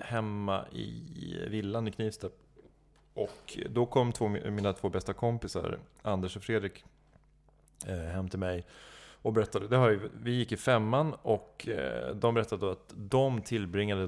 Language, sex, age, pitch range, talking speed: English, male, 30-49, 95-115 Hz, 150 wpm